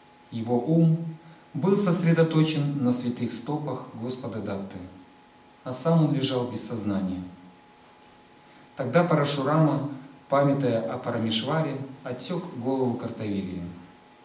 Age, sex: 40-59, male